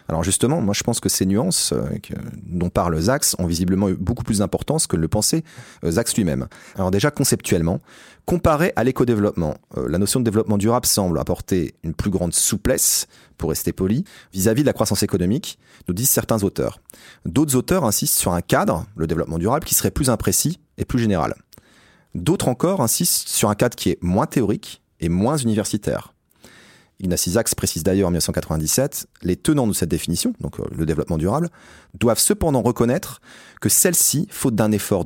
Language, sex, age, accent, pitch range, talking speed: French, male, 30-49, French, 95-125 Hz, 175 wpm